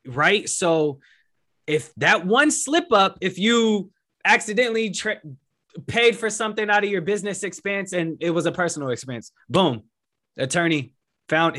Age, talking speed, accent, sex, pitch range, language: 20-39, 140 wpm, American, male, 120-160 Hz, English